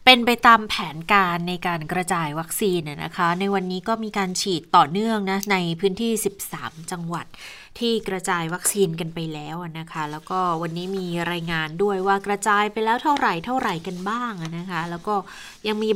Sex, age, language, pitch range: female, 20-39, Thai, 180-225 Hz